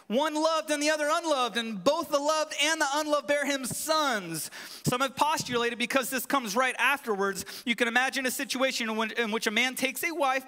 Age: 30-49